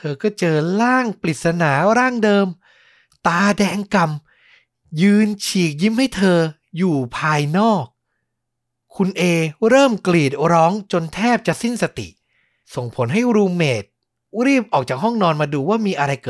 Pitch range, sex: 130-200 Hz, male